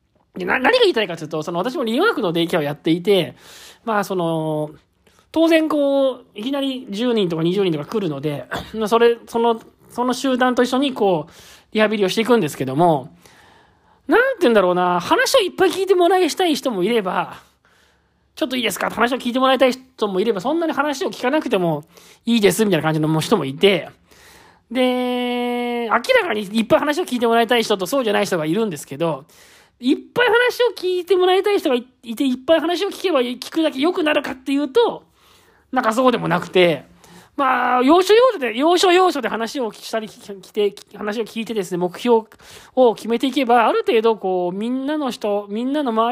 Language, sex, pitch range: Japanese, male, 205-285 Hz